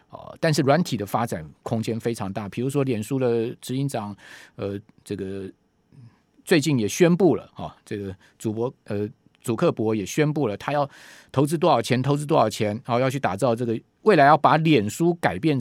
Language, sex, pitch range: Chinese, male, 110-150 Hz